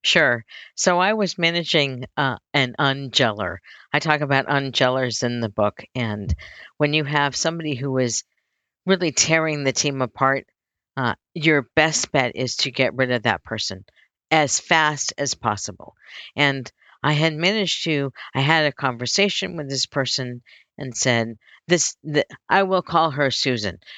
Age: 50-69